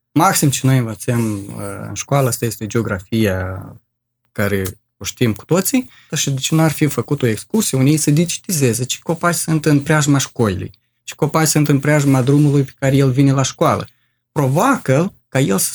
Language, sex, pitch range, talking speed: Romanian, male, 115-155 Hz, 190 wpm